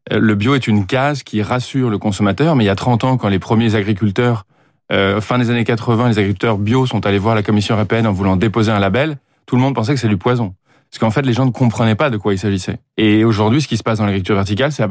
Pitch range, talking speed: 105-130 Hz, 280 wpm